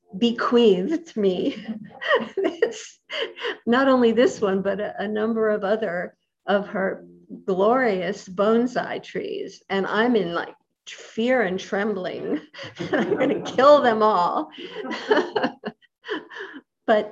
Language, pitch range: English, 200-255 Hz